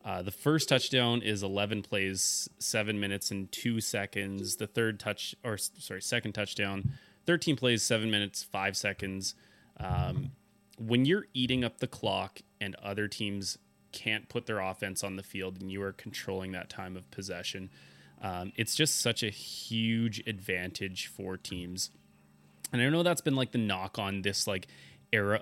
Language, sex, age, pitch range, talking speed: English, male, 20-39, 95-115 Hz, 170 wpm